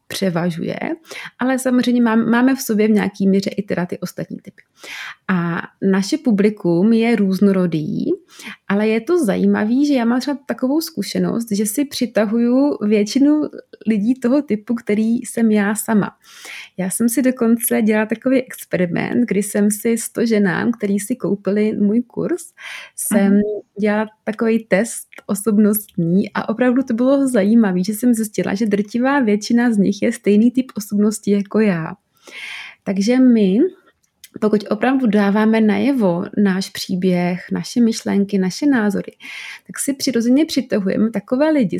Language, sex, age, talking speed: Czech, female, 30-49, 140 wpm